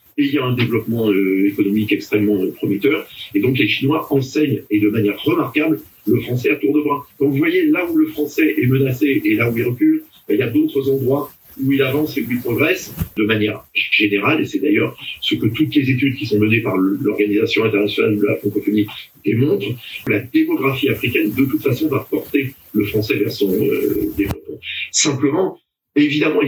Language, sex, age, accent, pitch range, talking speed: French, male, 50-69, French, 110-155 Hz, 200 wpm